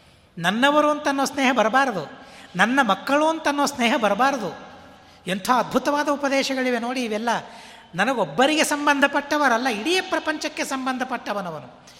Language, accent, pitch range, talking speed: Kannada, native, 205-280 Hz, 105 wpm